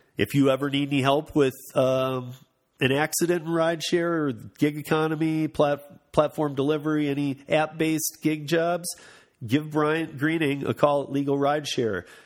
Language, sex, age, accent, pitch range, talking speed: English, male, 40-59, American, 125-155 Hz, 150 wpm